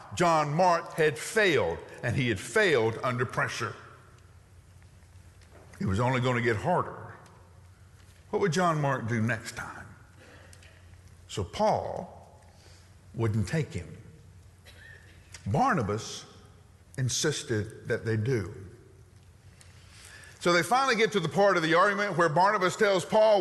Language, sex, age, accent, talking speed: English, male, 50-69, American, 125 wpm